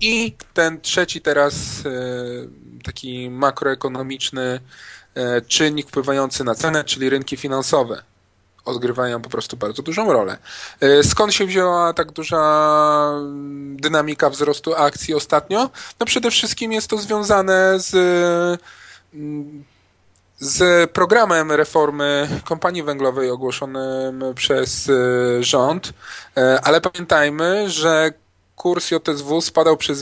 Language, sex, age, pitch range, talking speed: Polish, male, 20-39, 140-175 Hz, 100 wpm